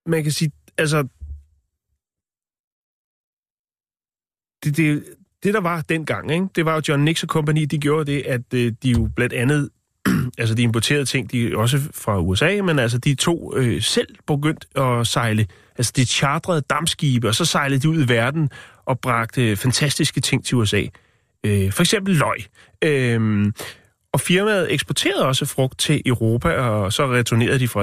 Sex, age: male, 30-49